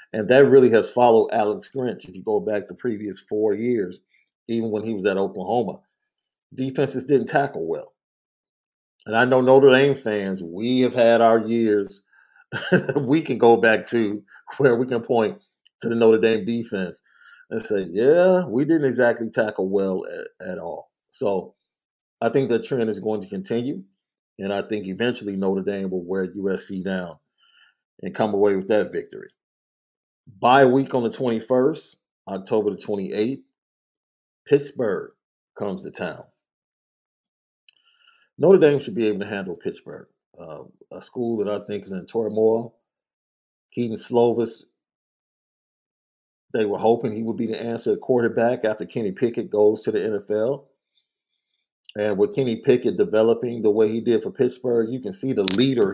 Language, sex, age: English, male, 50-69